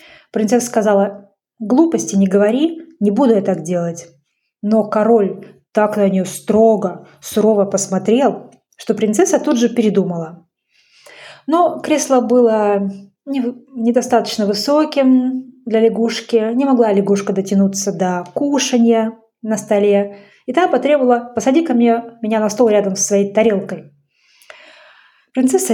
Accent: native